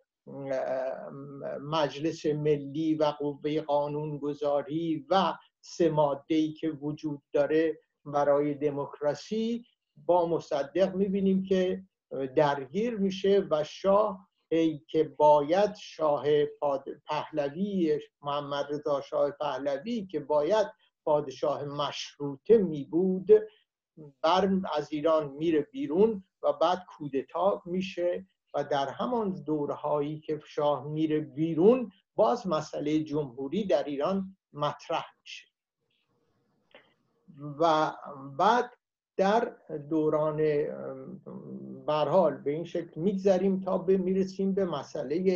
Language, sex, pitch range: Persian, male, 145-190 Hz